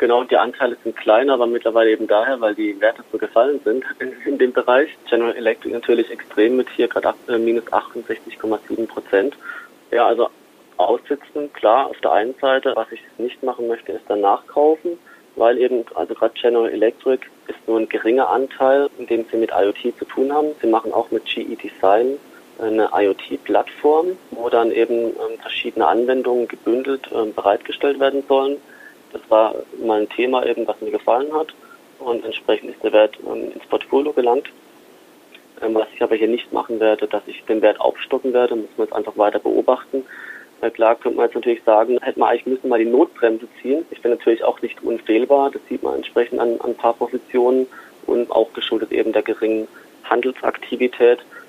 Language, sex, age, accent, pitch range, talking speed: German, male, 20-39, German, 115-185 Hz, 175 wpm